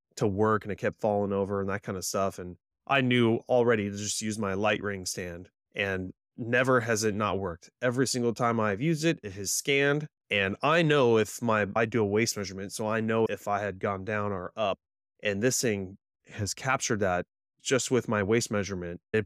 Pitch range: 100-120 Hz